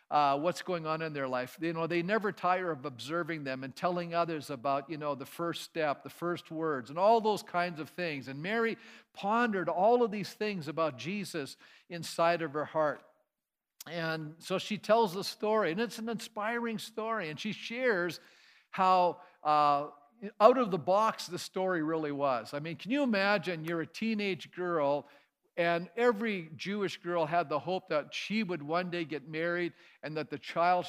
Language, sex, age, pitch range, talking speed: English, male, 50-69, 150-185 Hz, 190 wpm